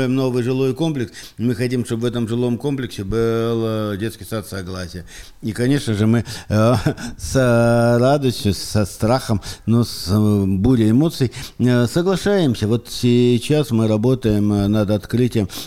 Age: 50-69